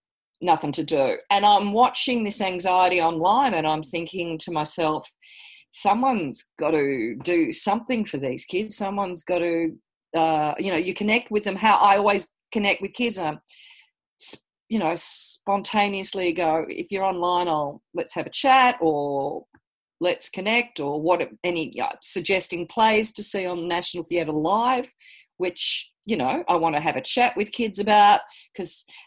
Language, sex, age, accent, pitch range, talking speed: English, female, 40-59, Australian, 175-235 Hz, 165 wpm